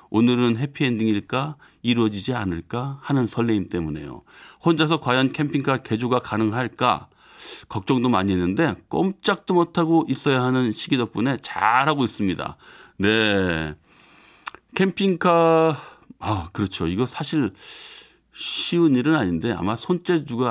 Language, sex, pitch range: Korean, male, 100-135 Hz